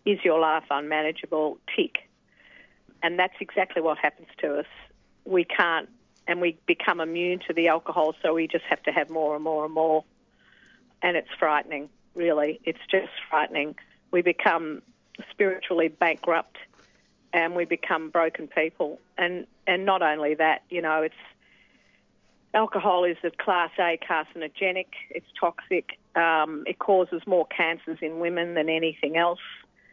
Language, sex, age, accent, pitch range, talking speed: English, female, 50-69, Australian, 160-195 Hz, 150 wpm